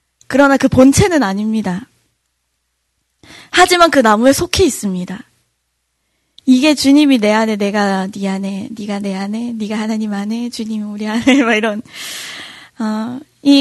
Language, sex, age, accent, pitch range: Korean, female, 20-39, native, 205-265 Hz